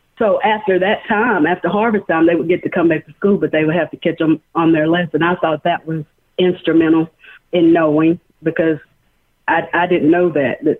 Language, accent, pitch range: English, American, 160-190 Hz